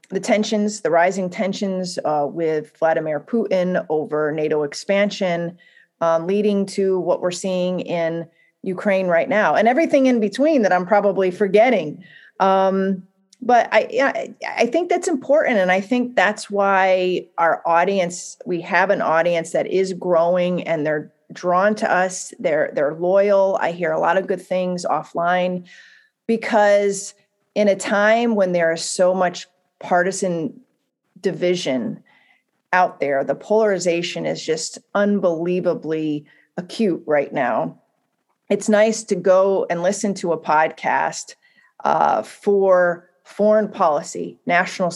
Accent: American